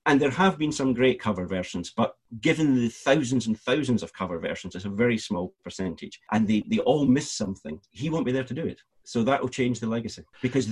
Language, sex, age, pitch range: English, male, 40-59, 110-165 Hz